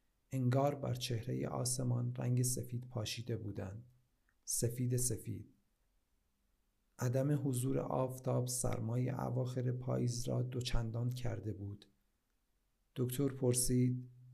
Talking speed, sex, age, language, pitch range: 90 wpm, male, 50-69, Persian, 115-130 Hz